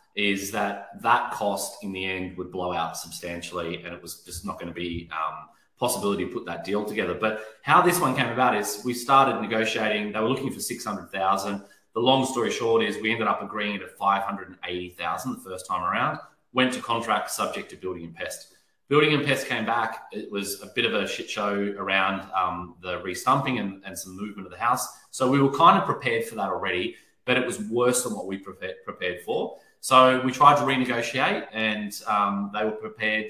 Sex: male